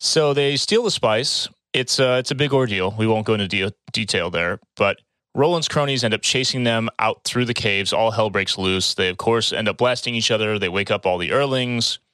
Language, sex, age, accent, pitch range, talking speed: English, male, 30-49, American, 95-125 Hz, 220 wpm